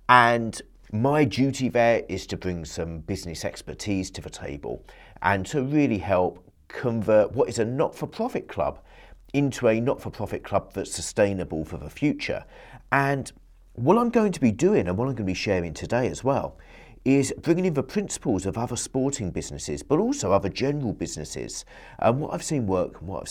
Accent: British